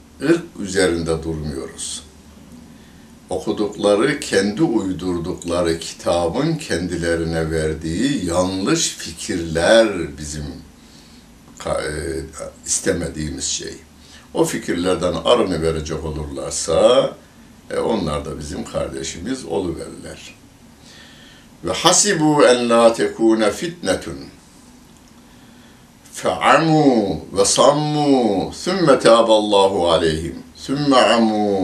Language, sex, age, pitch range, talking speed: Turkish, male, 60-79, 80-110 Hz, 70 wpm